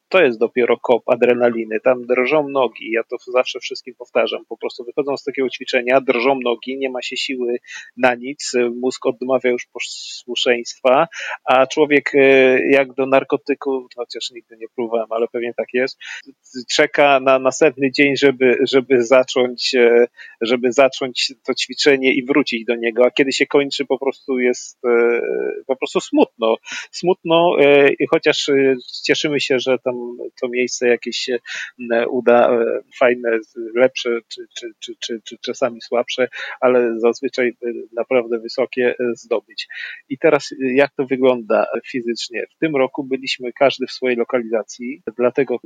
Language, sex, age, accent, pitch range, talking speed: Polish, male, 40-59, native, 120-140 Hz, 140 wpm